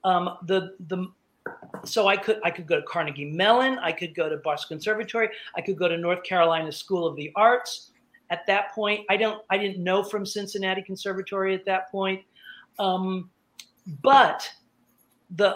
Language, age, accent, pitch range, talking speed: English, 50-69, American, 175-215 Hz, 175 wpm